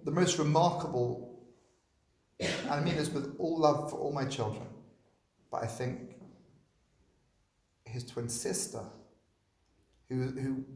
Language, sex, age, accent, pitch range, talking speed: English, male, 30-49, British, 115-165 Hz, 125 wpm